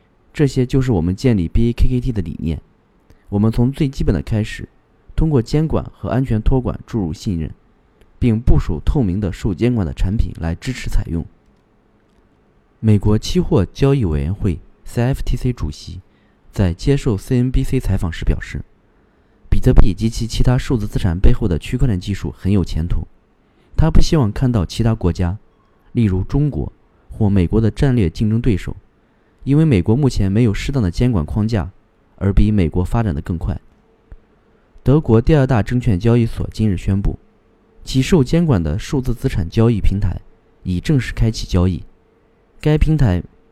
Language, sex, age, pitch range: Chinese, male, 20-39, 95-130 Hz